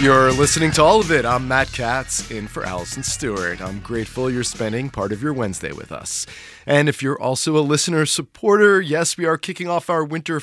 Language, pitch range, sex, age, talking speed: English, 115-155 Hz, male, 30-49, 215 wpm